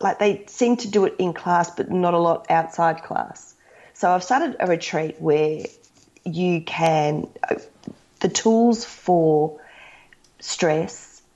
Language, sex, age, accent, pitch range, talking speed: English, female, 30-49, Australian, 155-195 Hz, 135 wpm